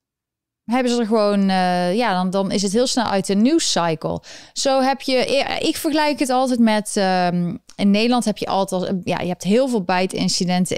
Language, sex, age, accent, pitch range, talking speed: Dutch, female, 20-39, Dutch, 185-230 Hz, 210 wpm